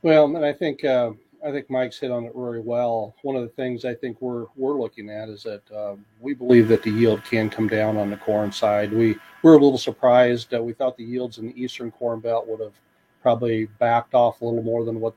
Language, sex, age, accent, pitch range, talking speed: English, male, 40-59, American, 110-120 Hz, 250 wpm